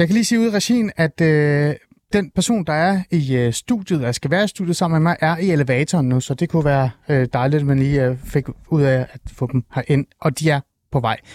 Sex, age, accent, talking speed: male, 30-49, native, 260 wpm